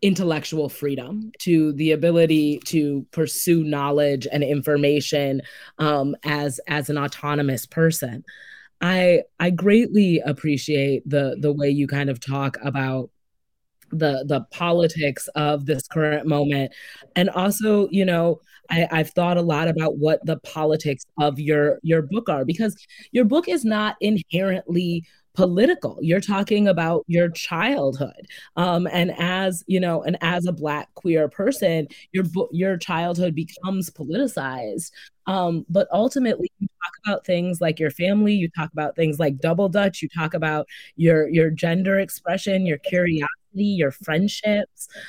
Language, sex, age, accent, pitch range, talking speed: English, female, 20-39, American, 150-185 Hz, 145 wpm